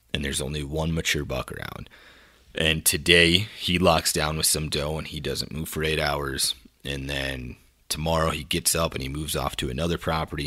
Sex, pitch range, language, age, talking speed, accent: male, 70-85 Hz, English, 30-49, 200 wpm, American